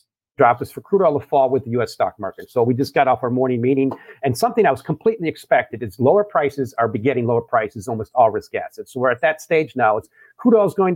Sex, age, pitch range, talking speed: male, 50-69, 140-195 Hz, 270 wpm